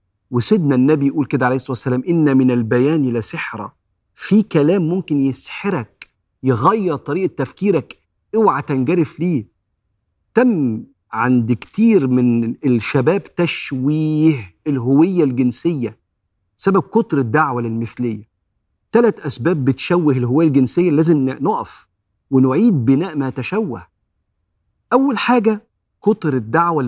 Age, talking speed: 50-69, 105 wpm